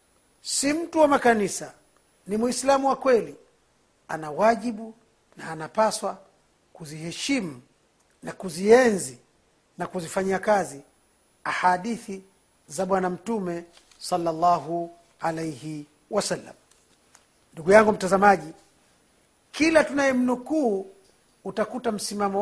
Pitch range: 170-230 Hz